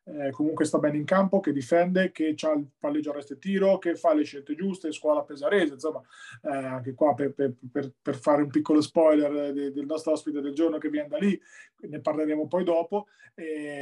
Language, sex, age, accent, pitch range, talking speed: Italian, male, 20-39, native, 155-190 Hz, 210 wpm